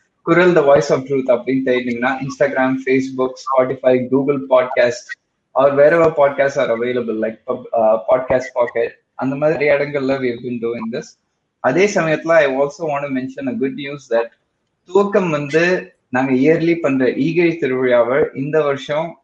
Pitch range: 125-155 Hz